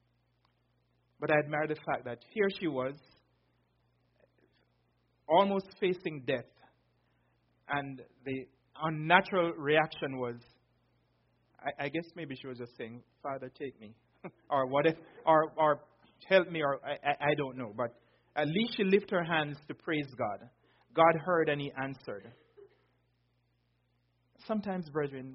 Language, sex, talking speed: English, male, 130 wpm